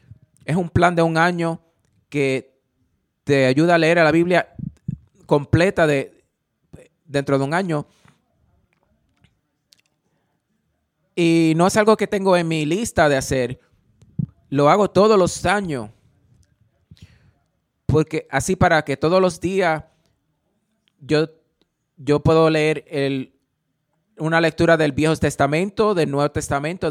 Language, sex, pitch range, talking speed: Spanish, male, 135-170 Hz, 125 wpm